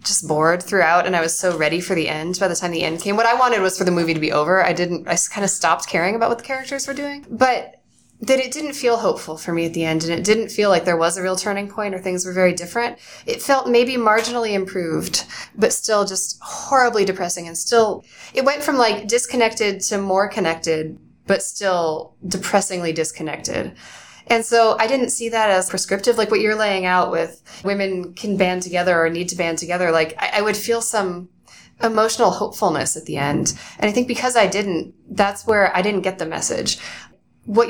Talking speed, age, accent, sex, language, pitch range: 220 wpm, 20-39, American, female, English, 170-225 Hz